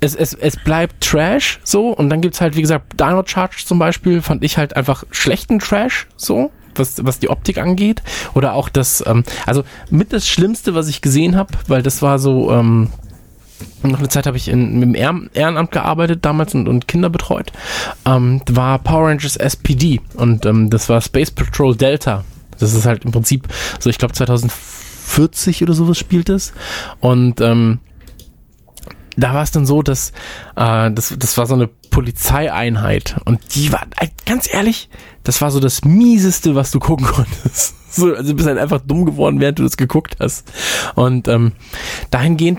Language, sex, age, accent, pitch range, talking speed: German, male, 20-39, German, 125-165 Hz, 185 wpm